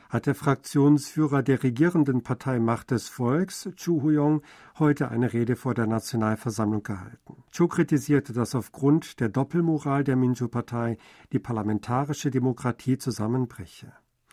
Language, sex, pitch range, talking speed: German, male, 120-150 Hz, 130 wpm